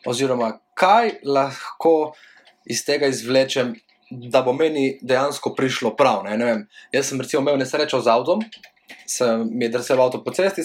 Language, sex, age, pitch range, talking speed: English, male, 20-39, 115-155 Hz, 165 wpm